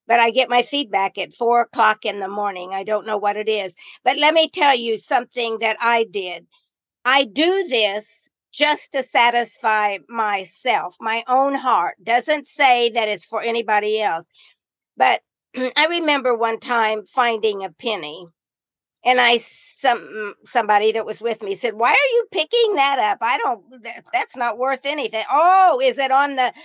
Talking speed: 175 wpm